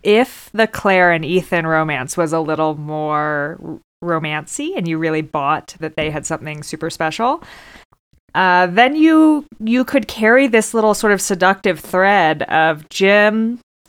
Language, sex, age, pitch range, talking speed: English, female, 20-39, 165-225 Hz, 155 wpm